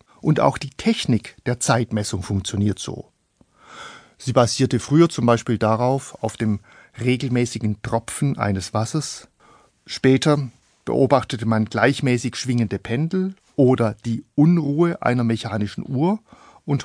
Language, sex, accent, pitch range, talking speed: German, male, German, 110-140 Hz, 120 wpm